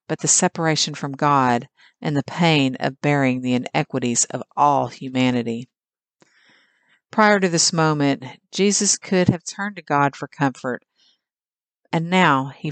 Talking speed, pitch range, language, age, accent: 140 wpm, 130-160 Hz, English, 50-69, American